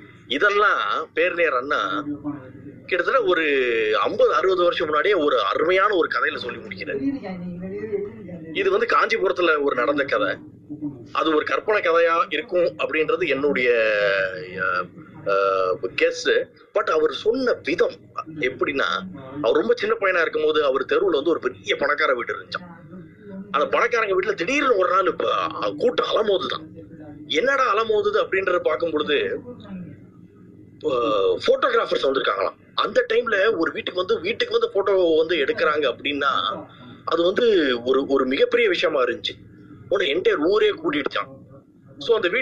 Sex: male